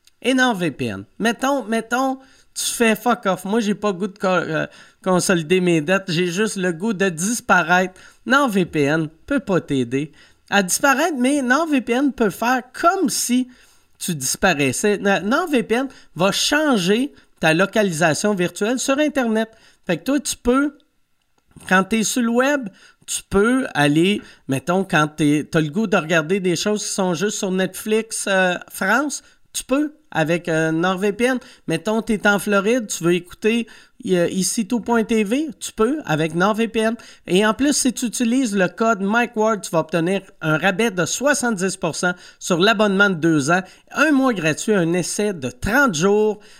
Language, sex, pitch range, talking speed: French, male, 180-245 Hz, 165 wpm